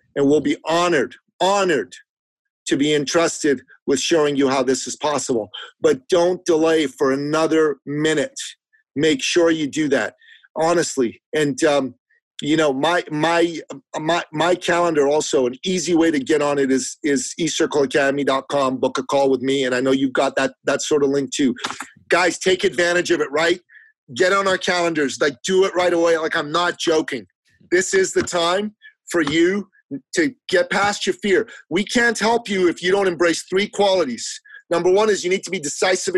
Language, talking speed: English, 185 wpm